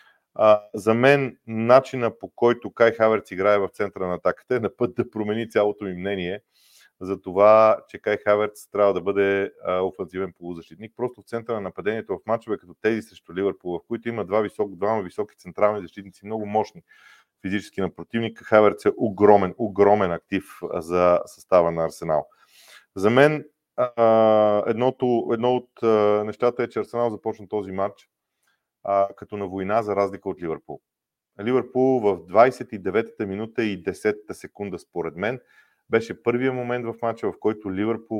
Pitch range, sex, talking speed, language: 95-115 Hz, male, 155 wpm, Bulgarian